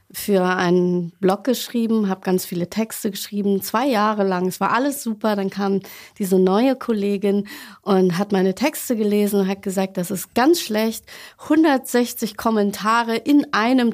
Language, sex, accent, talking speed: German, female, German, 160 wpm